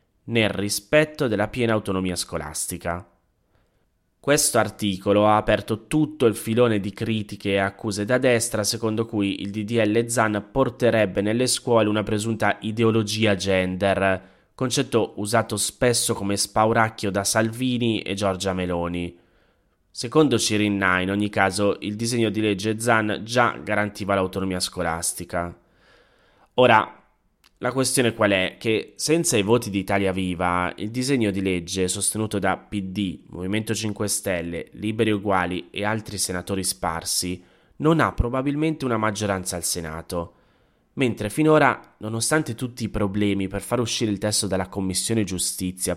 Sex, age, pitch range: male, 20-39, 95-115 Hz